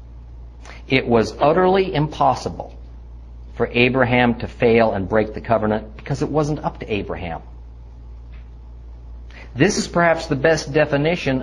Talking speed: 125 wpm